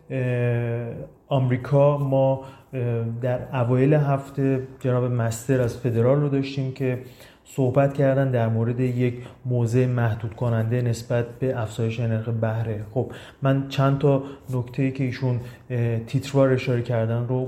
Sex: male